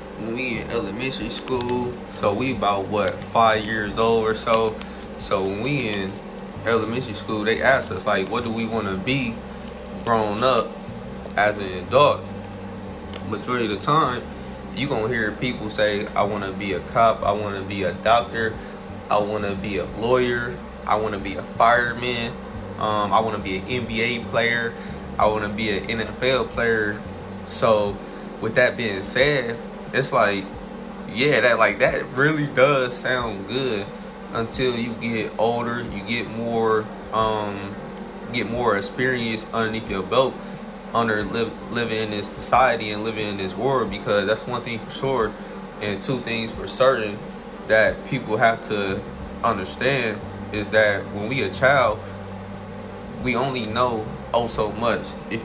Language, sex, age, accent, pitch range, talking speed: English, male, 20-39, American, 100-115 Hz, 165 wpm